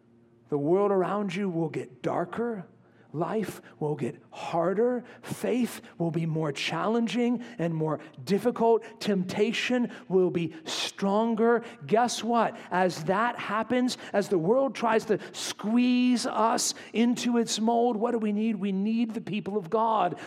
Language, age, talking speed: English, 40-59, 140 wpm